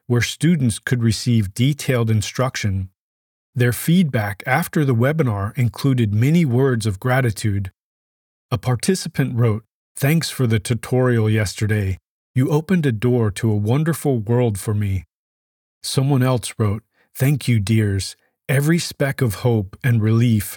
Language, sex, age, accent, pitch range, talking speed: English, male, 40-59, American, 110-135 Hz, 135 wpm